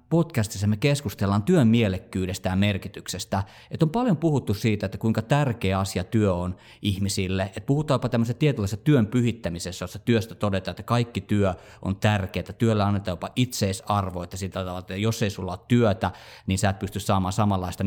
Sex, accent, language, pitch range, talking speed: male, native, Finnish, 95-125 Hz, 170 wpm